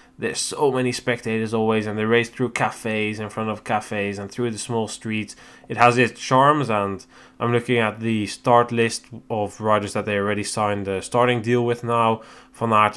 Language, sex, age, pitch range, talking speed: English, male, 10-29, 110-125 Hz, 200 wpm